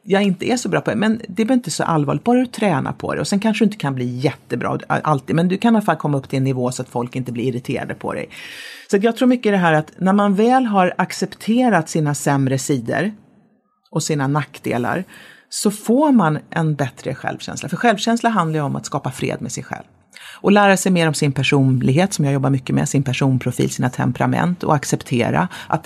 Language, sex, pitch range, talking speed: English, female, 140-215 Hz, 230 wpm